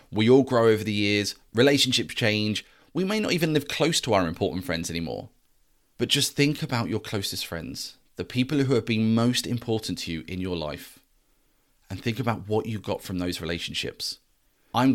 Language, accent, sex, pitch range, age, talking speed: English, British, male, 95-125 Hz, 30-49, 195 wpm